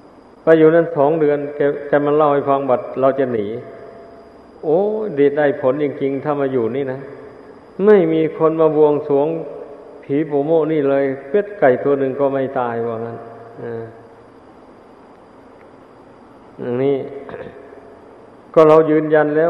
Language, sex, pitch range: Thai, male, 140-160 Hz